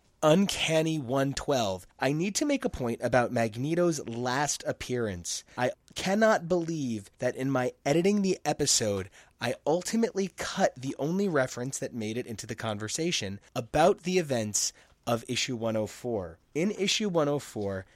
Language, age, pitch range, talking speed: English, 30-49, 120-170 Hz, 140 wpm